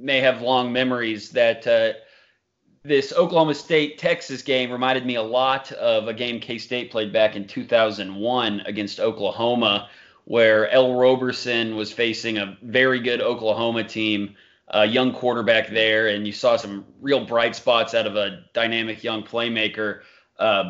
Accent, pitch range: American, 110-135 Hz